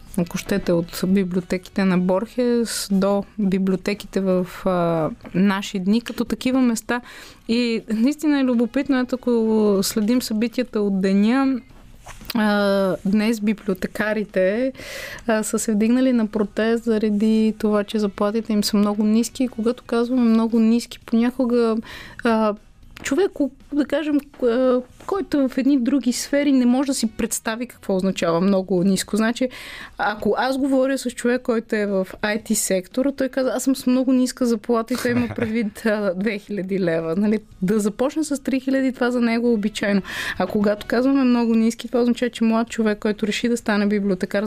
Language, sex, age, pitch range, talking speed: Bulgarian, female, 20-39, 205-250 Hz, 160 wpm